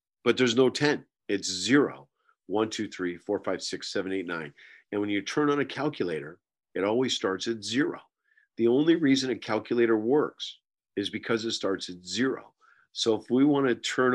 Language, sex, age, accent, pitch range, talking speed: English, male, 50-69, American, 95-125 Hz, 190 wpm